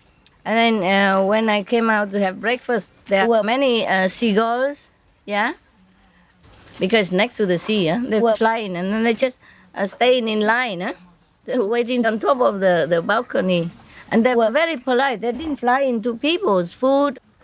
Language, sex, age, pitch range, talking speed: English, female, 20-39, 180-245 Hz, 180 wpm